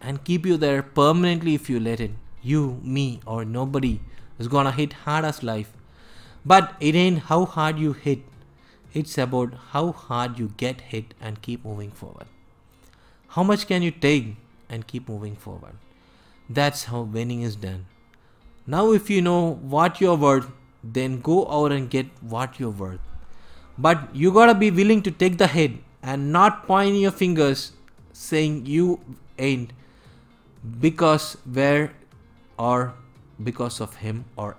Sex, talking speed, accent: male, 160 wpm, native